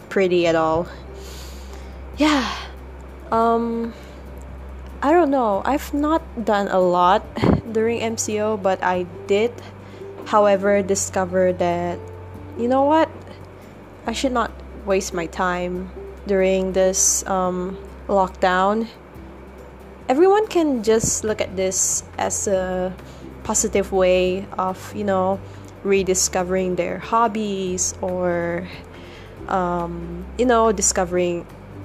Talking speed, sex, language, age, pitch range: 105 wpm, female, English, 10-29, 175-205 Hz